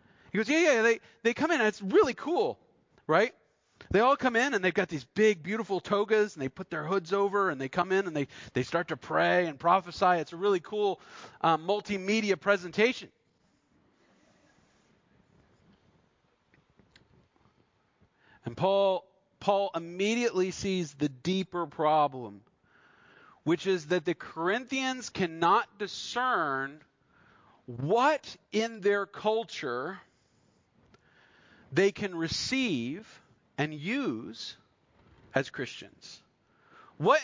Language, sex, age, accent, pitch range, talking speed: English, male, 40-59, American, 175-245 Hz, 125 wpm